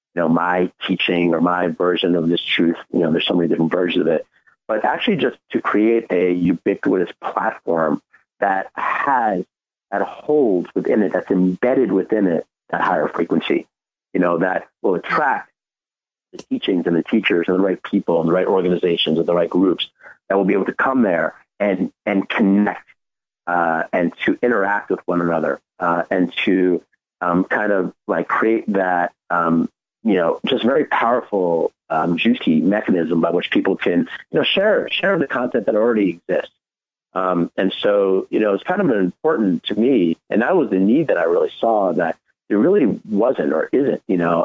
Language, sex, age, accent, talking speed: English, male, 40-59, American, 185 wpm